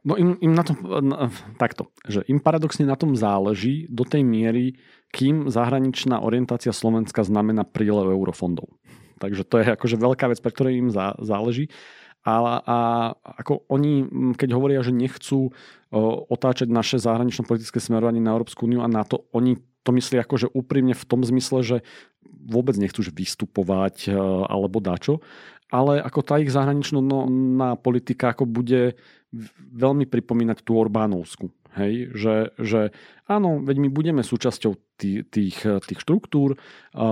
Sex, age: male, 40-59